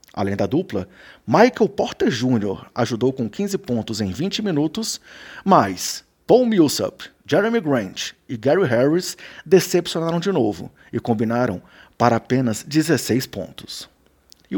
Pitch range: 120-190 Hz